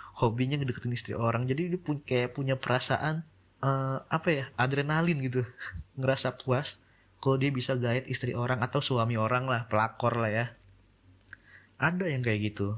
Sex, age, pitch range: male, 20-39, 100-125 Hz